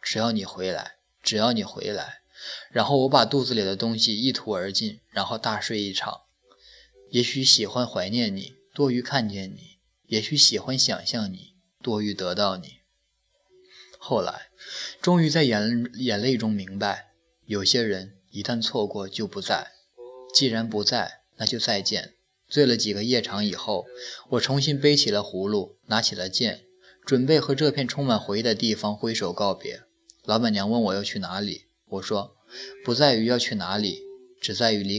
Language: Chinese